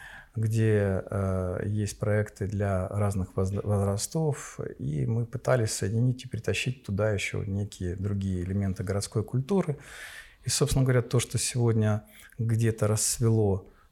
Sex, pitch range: male, 95-125 Hz